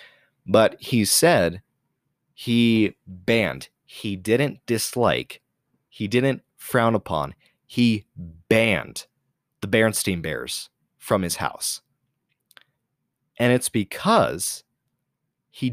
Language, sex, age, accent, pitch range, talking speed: English, male, 30-49, American, 105-130 Hz, 90 wpm